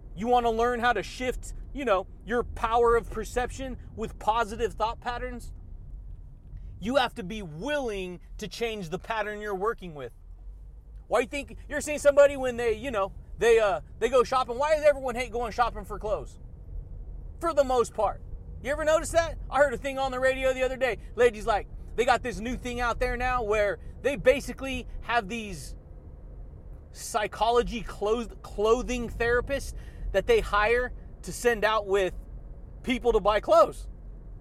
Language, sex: English, male